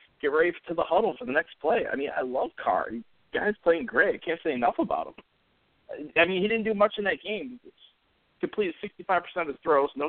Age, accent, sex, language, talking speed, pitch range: 40-59, American, male, English, 245 wpm, 135-220 Hz